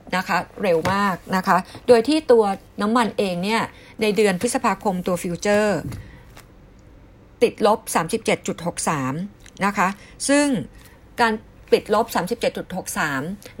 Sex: female